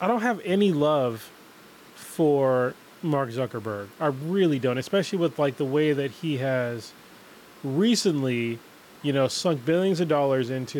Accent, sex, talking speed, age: American, male, 150 wpm, 20-39